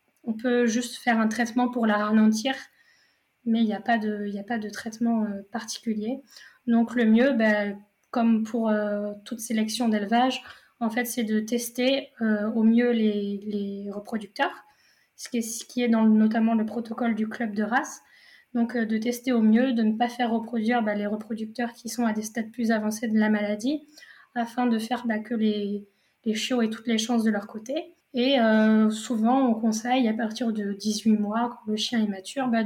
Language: French